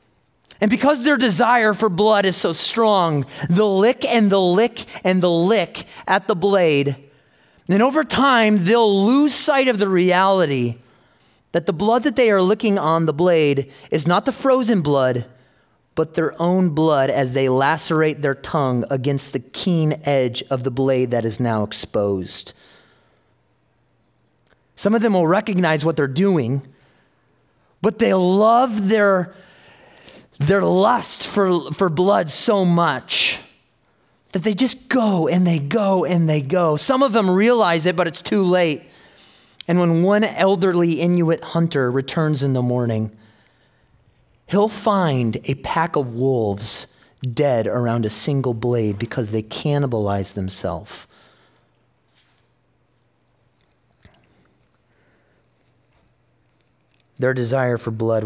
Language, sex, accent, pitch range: English, male, American, 130-200 Hz